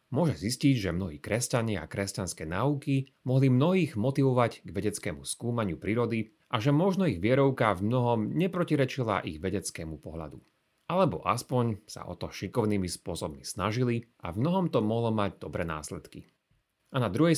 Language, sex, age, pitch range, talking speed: Slovak, male, 30-49, 100-140 Hz, 155 wpm